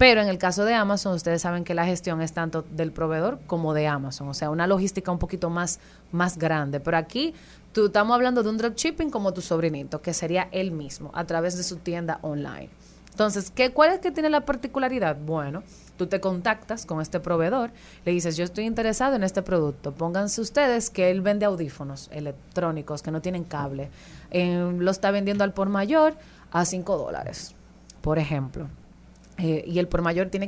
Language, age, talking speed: Spanish, 30-49, 195 wpm